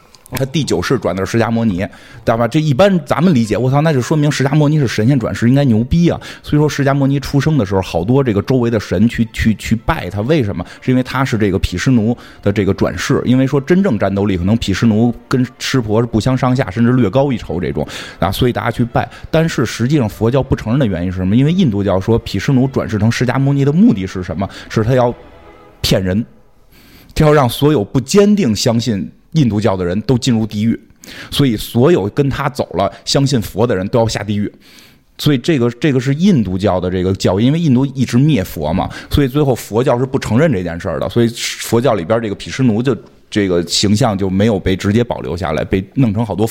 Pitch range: 105-135 Hz